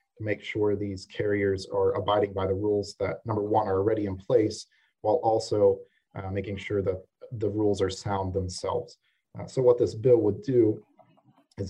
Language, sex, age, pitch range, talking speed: English, male, 30-49, 100-120 Hz, 180 wpm